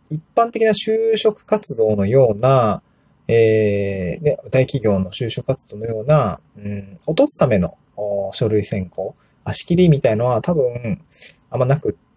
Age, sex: 20-39, male